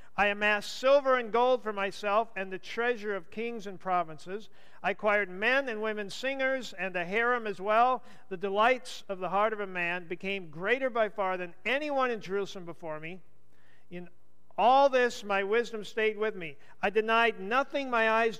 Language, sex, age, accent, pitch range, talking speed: English, male, 50-69, American, 150-210 Hz, 185 wpm